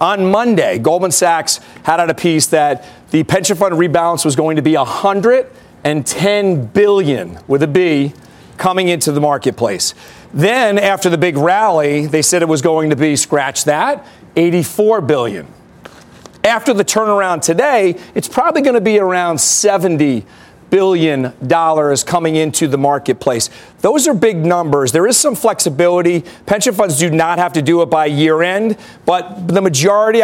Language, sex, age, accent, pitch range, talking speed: English, male, 40-59, American, 155-190 Hz, 165 wpm